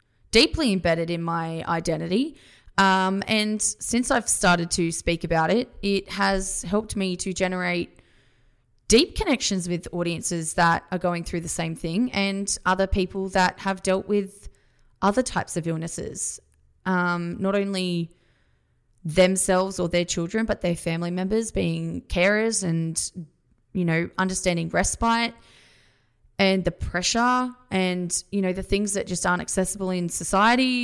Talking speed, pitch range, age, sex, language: 145 wpm, 170-210 Hz, 20-39, female, English